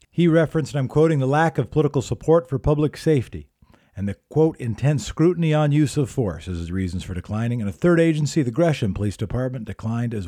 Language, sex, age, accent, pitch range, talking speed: English, male, 50-69, American, 115-150 Hz, 215 wpm